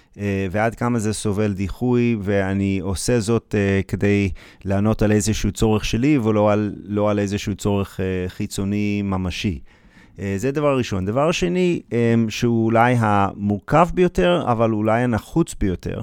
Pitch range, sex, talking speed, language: 100-120 Hz, male, 150 wpm, Hebrew